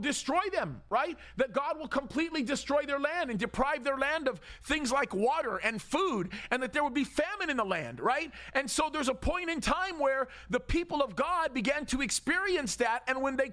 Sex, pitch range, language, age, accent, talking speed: male, 260-310 Hz, English, 40-59, American, 215 wpm